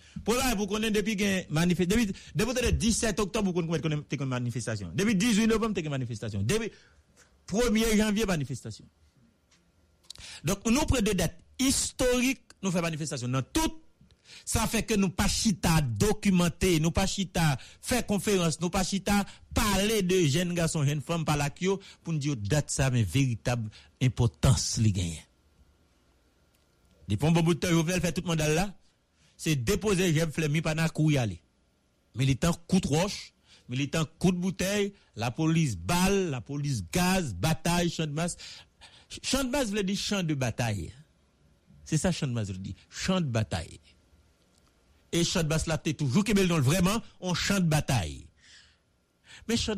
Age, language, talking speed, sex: 60-79, English, 170 wpm, male